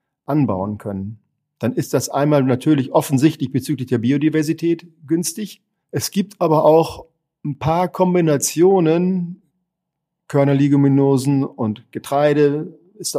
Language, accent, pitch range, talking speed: German, German, 125-145 Hz, 105 wpm